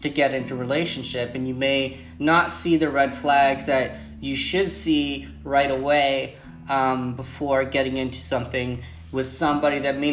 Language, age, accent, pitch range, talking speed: English, 20-39, American, 135-155 Hz, 160 wpm